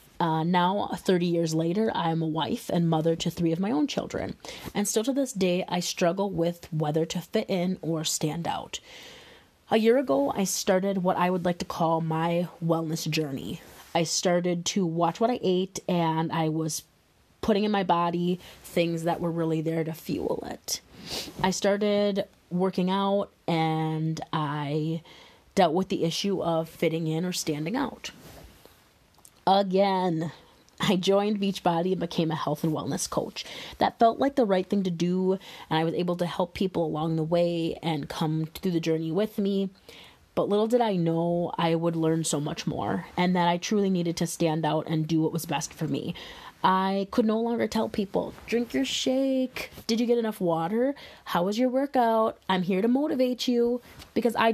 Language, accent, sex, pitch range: English, American, female, 165-200 Hz